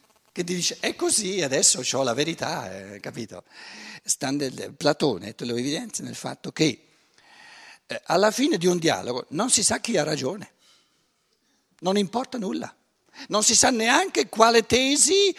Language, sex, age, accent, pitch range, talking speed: Italian, male, 60-79, native, 150-240 Hz, 150 wpm